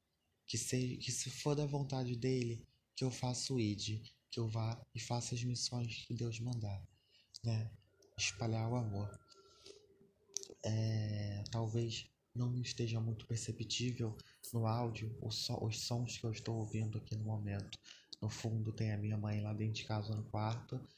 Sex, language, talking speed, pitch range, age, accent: male, Portuguese, 160 wpm, 110-125 Hz, 20-39, Brazilian